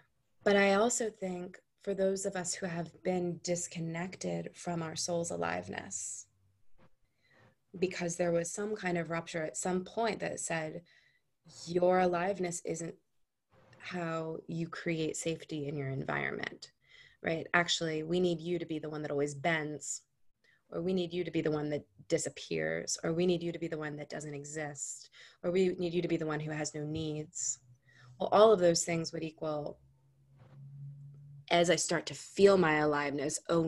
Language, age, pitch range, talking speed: English, 20-39, 150-180 Hz, 175 wpm